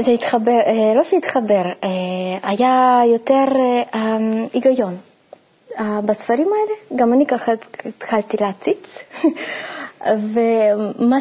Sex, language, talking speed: female, Hebrew, 70 wpm